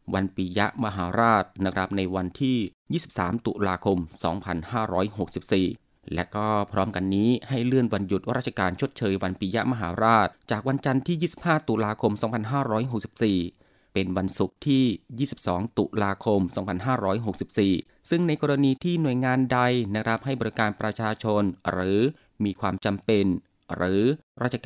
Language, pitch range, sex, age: Thai, 95-125 Hz, male, 20-39